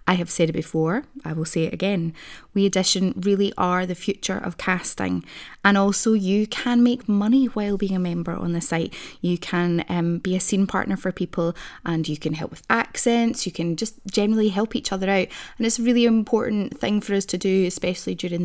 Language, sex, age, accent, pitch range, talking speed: English, female, 20-39, British, 180-225 Hz, 215 wpm